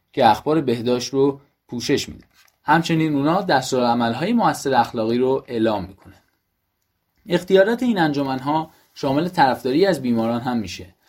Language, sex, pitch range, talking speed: Persian, male, 120-155 Hz, 125 wpm